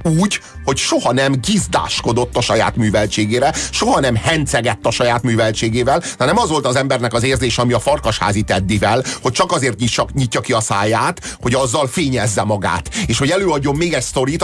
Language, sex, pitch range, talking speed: Hungarian, male, 120-165 Hz, 175 wpm